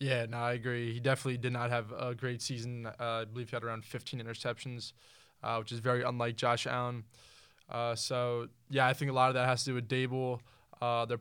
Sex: male